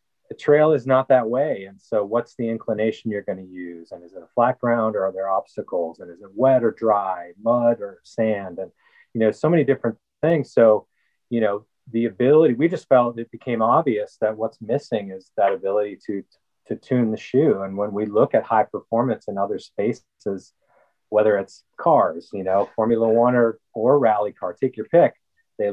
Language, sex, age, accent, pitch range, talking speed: English, male, 30-49, American, 105-135 Hz, 205 wpm